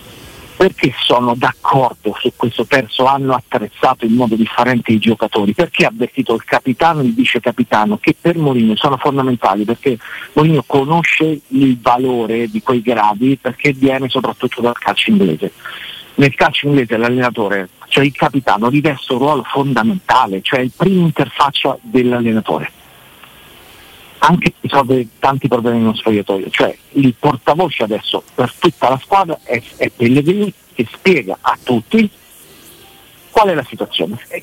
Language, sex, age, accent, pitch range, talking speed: Italian, male, 50-69, native, 120-160 Hz, 145 wpm